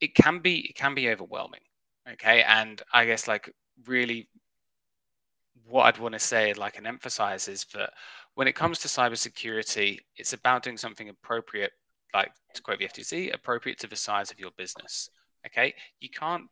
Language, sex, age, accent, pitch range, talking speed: English, male, 20-39, British, 110-145 Hz, 175 wpm